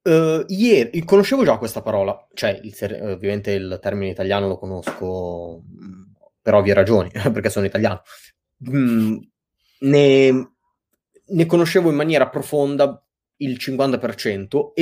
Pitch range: 105-160 Hz